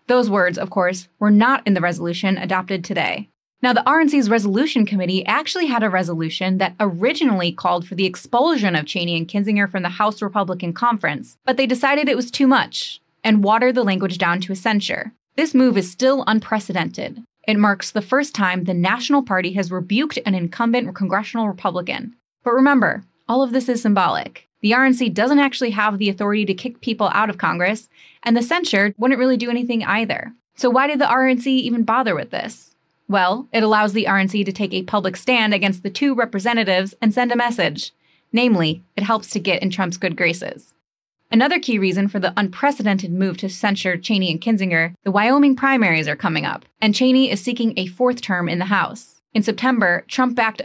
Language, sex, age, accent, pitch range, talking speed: English, female, 20-39, American, 190-245 Hz, 195 wpm